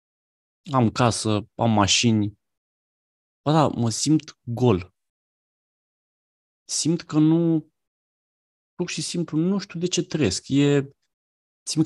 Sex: male